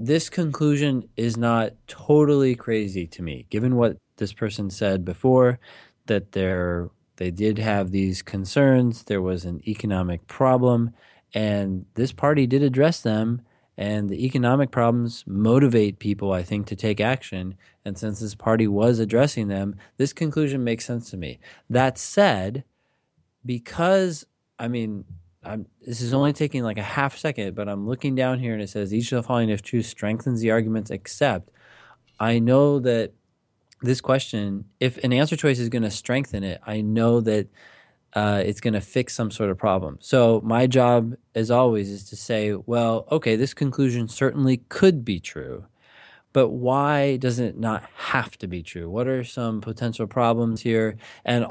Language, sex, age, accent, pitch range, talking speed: English, male, 20-39, American, 105-130 Hz, 170 wpm